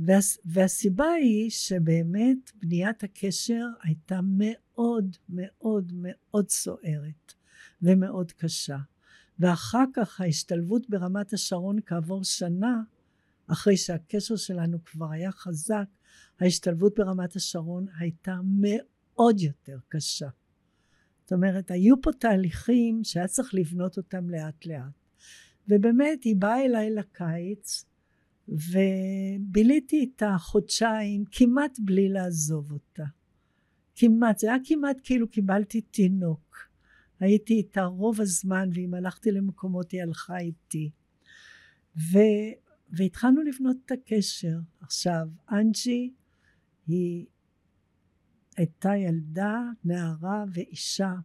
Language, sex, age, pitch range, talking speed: Hebrew, female, 60-79, 170-215 Hz, 100 wpm